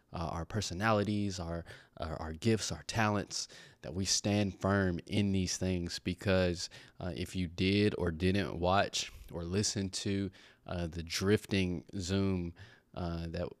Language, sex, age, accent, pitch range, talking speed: English, male, 20-39, American, 90-110 Hz, 145 wpm